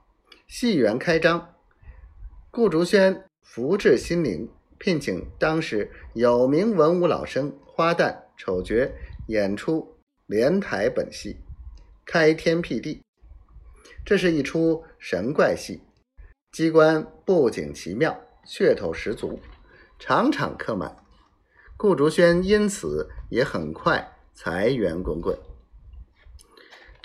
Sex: male